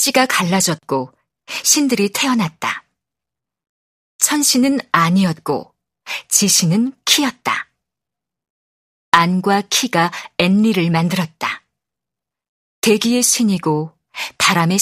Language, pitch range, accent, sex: Korean, 175-240 Hz, native, female